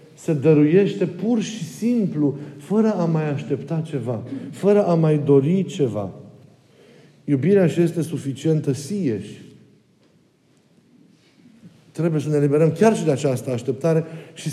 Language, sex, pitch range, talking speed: Romanian, male, 140-180 Hz, 125 wpm